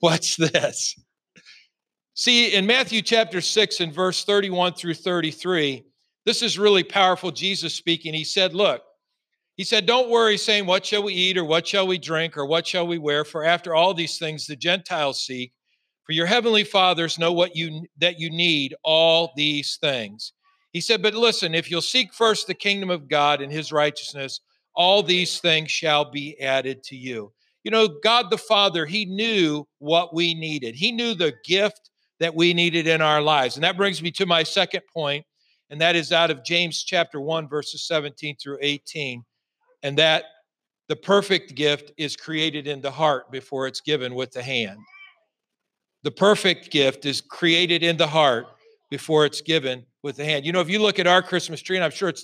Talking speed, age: 190 wpm, 50-69